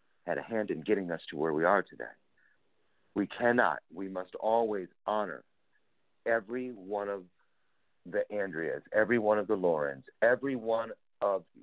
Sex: male